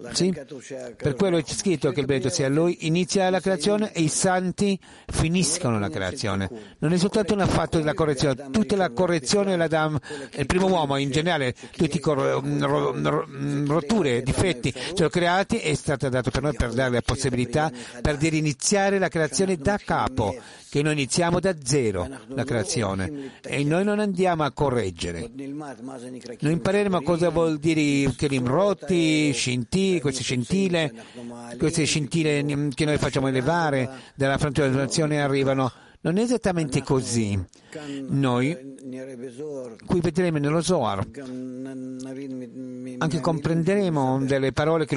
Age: 50-69